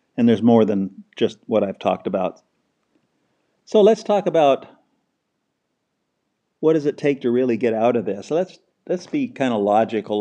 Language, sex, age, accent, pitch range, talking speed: English, male, 50-69, American, 110-140 Hz, 175 wpm